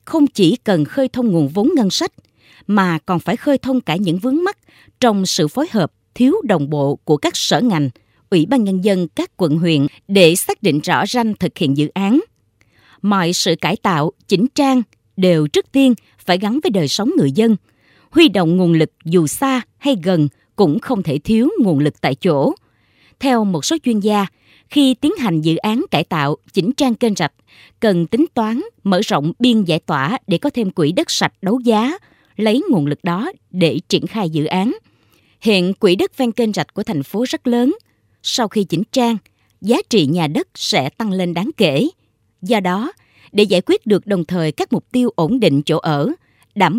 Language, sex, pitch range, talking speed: Vietnamese, female, 165-245 Hz, 205 wpm